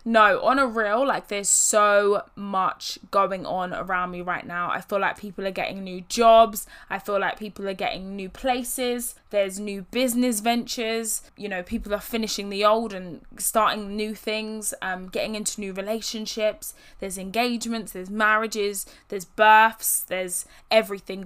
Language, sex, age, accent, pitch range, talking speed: English, female, 10-29, British, 190-225 Hz, 165 wpm